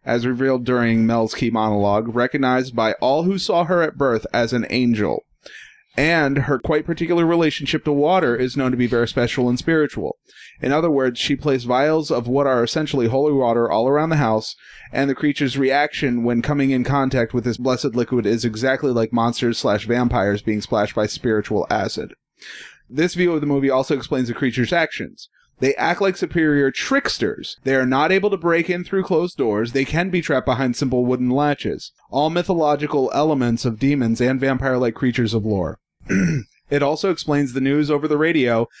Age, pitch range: 30-49, 120-150 Hz